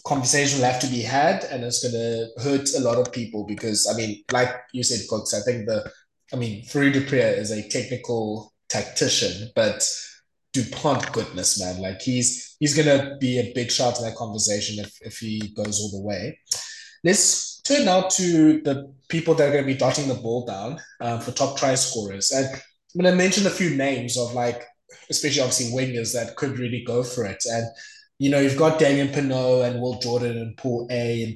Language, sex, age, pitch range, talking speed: English, male, 20-39, 115-135 Hz, 210 wpm